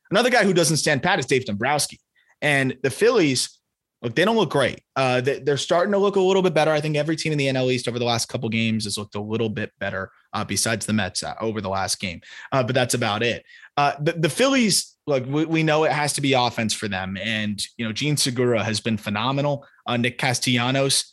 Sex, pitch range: male, 115-150 Hz